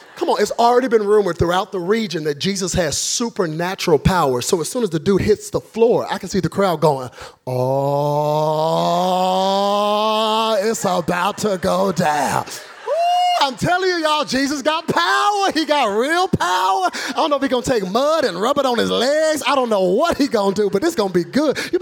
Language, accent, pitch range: English, American, 155-245 Hz